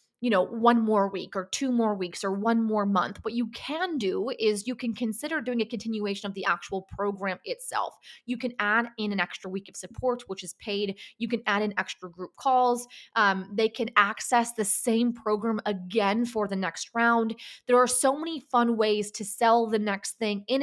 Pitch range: 195-235 Hz